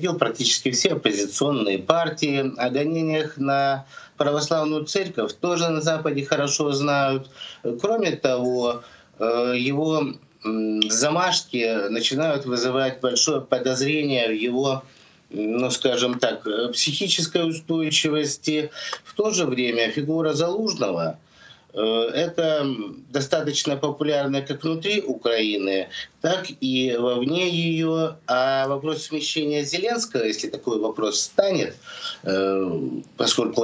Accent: native